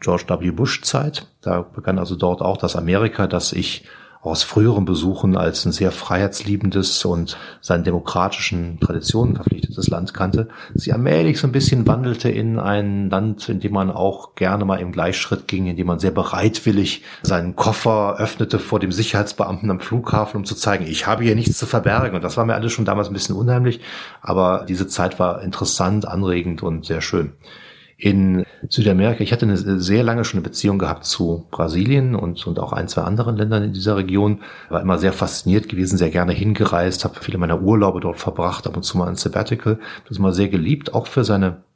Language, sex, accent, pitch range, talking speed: German, male, German, 90-110 Hz, 195 wpm